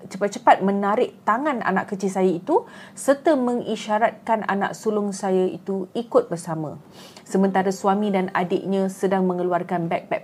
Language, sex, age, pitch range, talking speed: Malay, female, 30-49, 175-205 Hz, 130 wpm